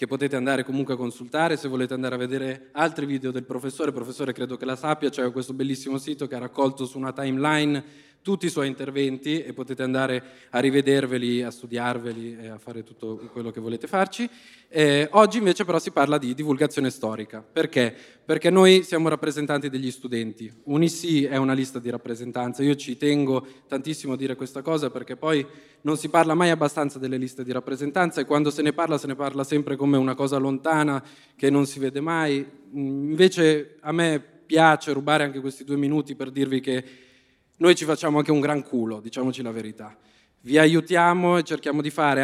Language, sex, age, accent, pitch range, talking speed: Italian, male, 20-39, native, 130-150 Hz, 195 wpm